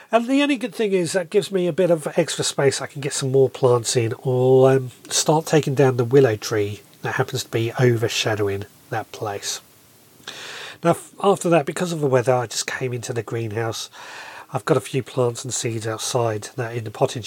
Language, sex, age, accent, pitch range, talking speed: English, male, 30-49, British, 125-165 Hz, 220 wpm